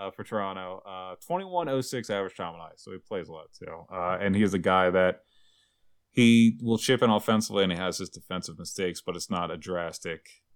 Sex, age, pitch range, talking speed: male, 30-49, 85-110 Hz, 235 wpm